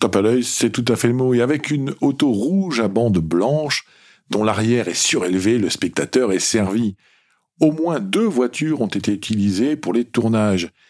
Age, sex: 50-69, male